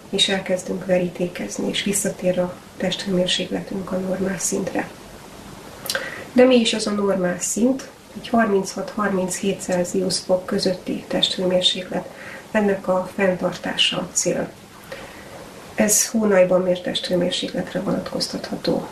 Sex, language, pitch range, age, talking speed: female, Hungarian, 185-210 Hz, 30-49, 100 wpm